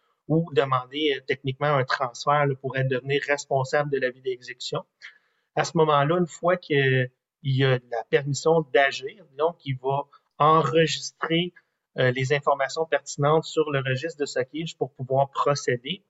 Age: 30-49